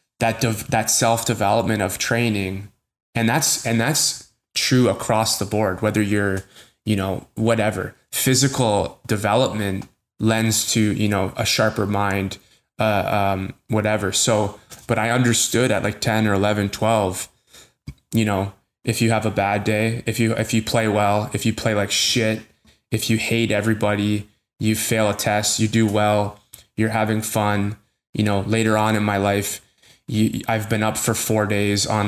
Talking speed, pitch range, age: 165 wpm, 100-115 Hz, 20-39